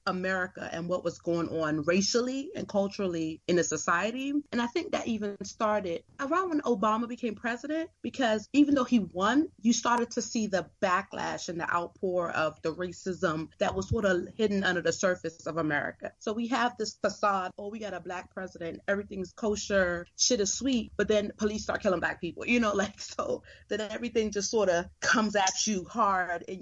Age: 30-49